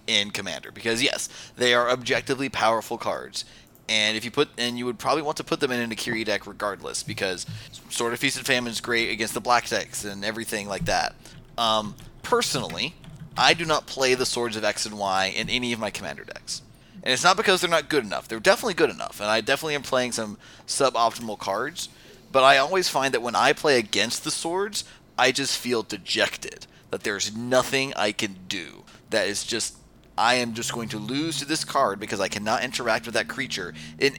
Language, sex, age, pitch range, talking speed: English, male, 30-49, 110-135 Hz, 210 wpm